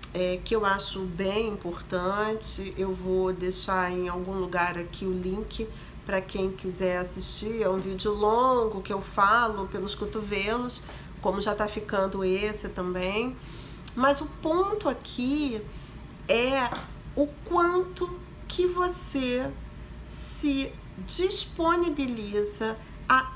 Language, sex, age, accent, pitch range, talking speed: Portuguese, female, 40-59, Brazilian, 195-270 Hz, 120 wpm